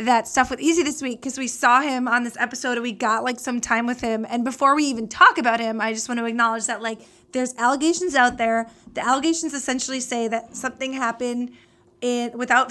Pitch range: 225-260 Hz